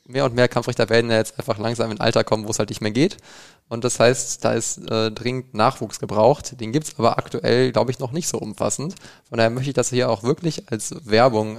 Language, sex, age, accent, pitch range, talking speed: German, male, 20-39, German, 115-140 Hz, 250 wpm